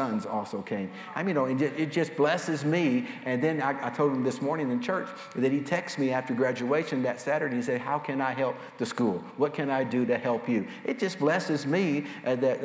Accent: American